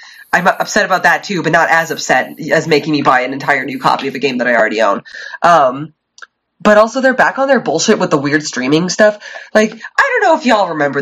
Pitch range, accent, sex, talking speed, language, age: 145-185 Hz, American, female, 240 wpm, English, 20-39